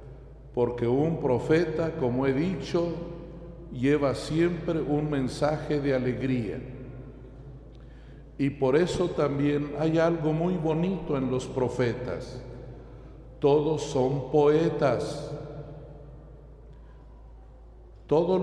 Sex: male